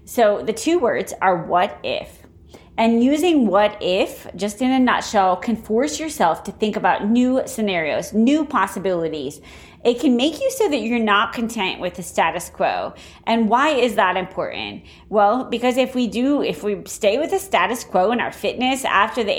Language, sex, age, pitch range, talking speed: English, female, 30-49, 190-245 Hz, 185 wpm